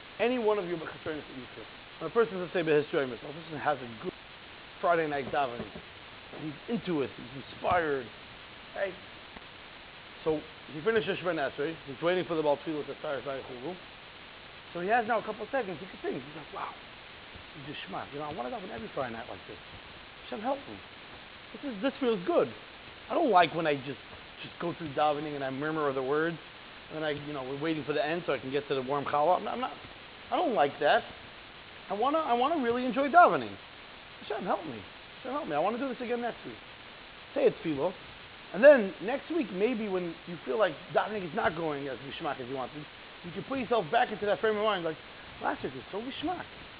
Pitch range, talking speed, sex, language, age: 155-235 Hz, 230 wpm, male, English, 30-49